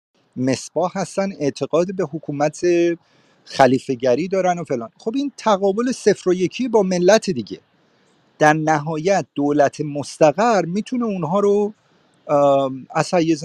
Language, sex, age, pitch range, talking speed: Persian, male, 50-69, 145-195 Hz, 125 wpm